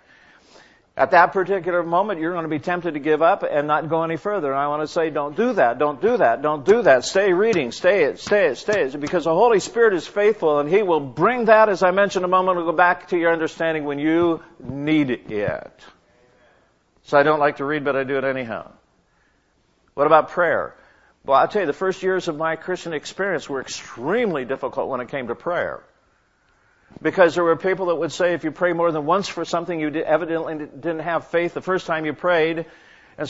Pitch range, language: 150-185 Hz, English